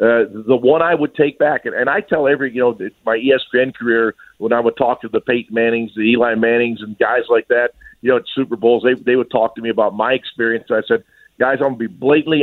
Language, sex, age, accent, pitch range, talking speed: English, male, 50-69, American, 120-140 Hz, 260 wpm